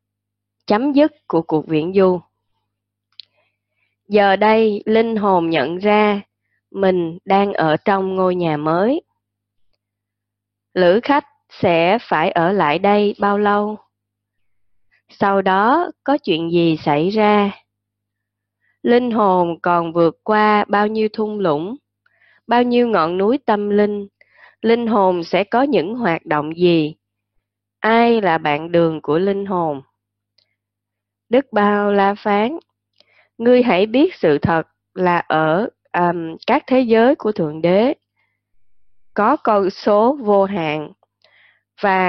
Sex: female